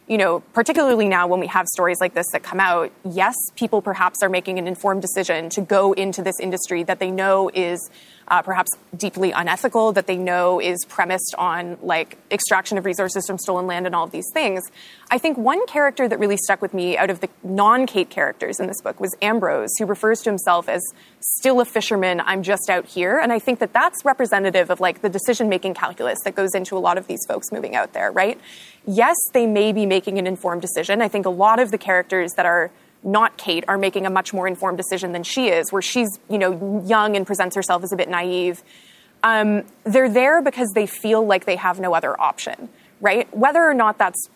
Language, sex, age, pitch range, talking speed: English, female, 20-39, 185-220 Hz, 220 wpm